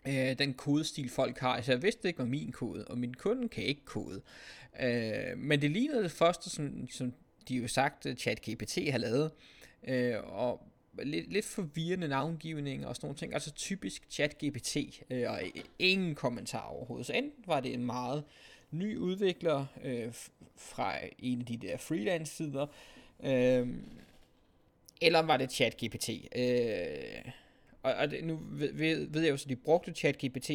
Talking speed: 165 wpm